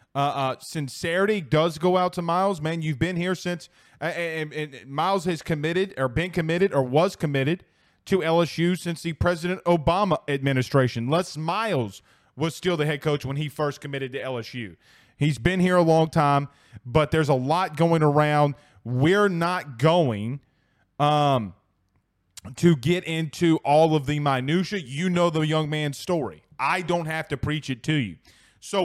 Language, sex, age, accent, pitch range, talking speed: English, male, 30-49, American, 140-170 Hz, 175 wpm